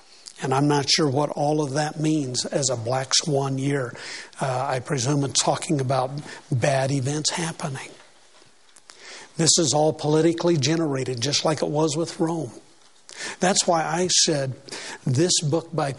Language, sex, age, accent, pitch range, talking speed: English, male, 60-79, American, 145-180 Hz, 155 wpm